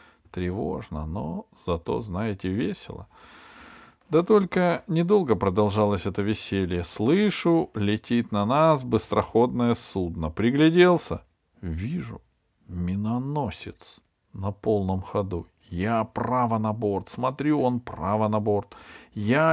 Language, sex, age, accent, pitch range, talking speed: Russian, male, 40-59, native, 100-155 Hz, 100 wpm